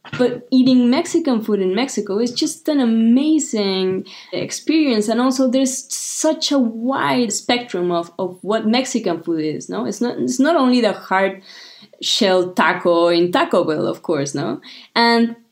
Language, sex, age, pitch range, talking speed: English, female, 20-39, 180-255 Hz, 160 wpm